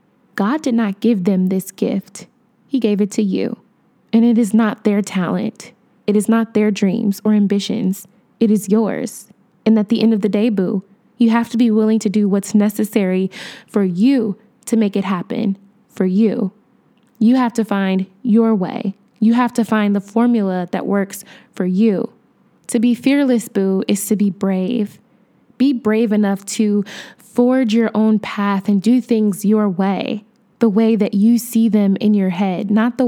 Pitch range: 200-235 Hz